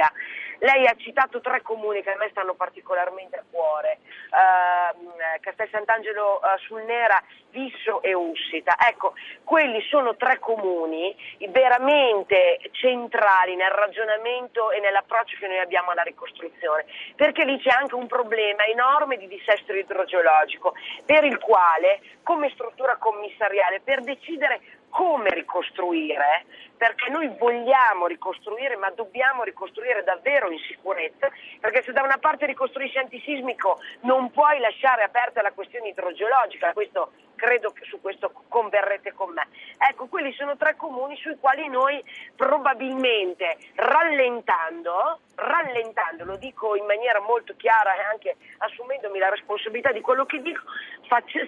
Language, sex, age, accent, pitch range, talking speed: Italian, female, 30-49, native, 195-275 Hz, 135 wpm